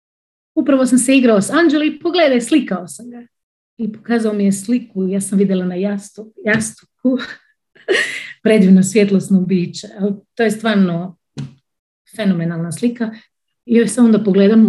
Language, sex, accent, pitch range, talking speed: Croatian, female, native, 170-220 Hz, 145 wpm